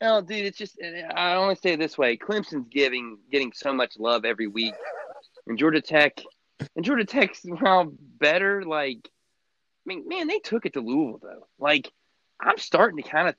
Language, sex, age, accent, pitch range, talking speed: English, male, 30-49, American, 120-170 Hz, 190 wpm